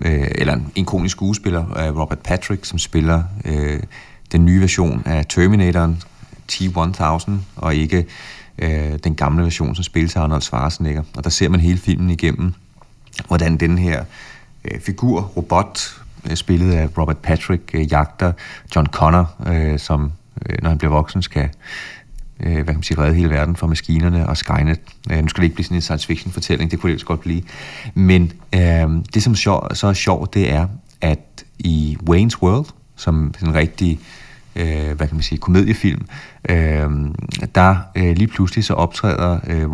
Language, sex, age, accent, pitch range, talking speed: Danish, male, 30-49, native, 80-95 Hz, 170 wpm